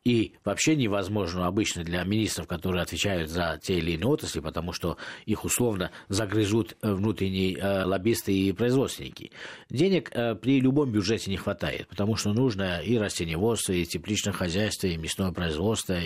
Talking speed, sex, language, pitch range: 145 wpm, male, Russian, 90-120 Hz